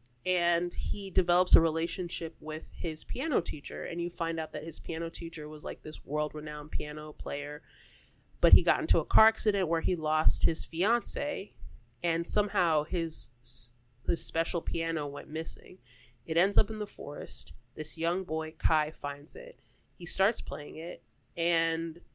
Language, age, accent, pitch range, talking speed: English, 20-39, American, 150-175 Hz, 165 wpm